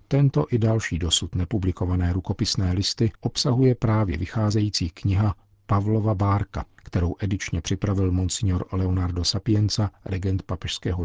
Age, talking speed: 50-69, 115 wpm